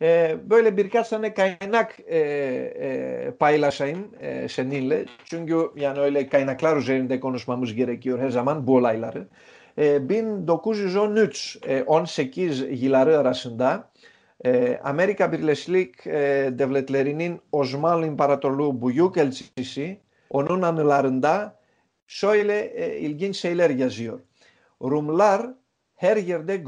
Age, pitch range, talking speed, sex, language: 50-69, 140-190 Hz, 85 wpm, male, Turkish